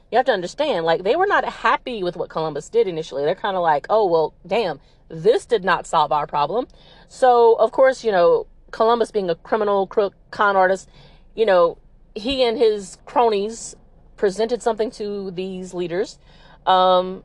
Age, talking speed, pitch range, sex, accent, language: 40-59, 175 wpm, 180-240 Hz, female, American, English